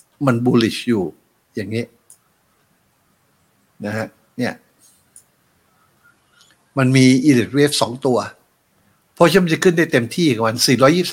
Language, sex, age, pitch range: Thai, male, 60-79, 125-170 Hz